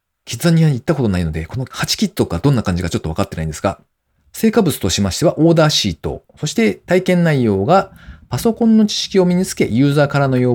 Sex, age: male, 40-59